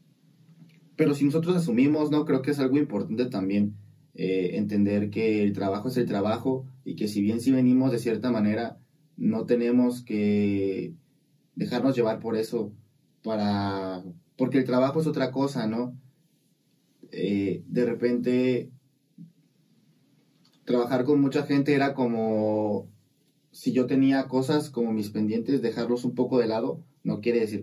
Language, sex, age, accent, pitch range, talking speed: Spanish, male, 20-39, Mexican, 105-140 Hz, 145 wpm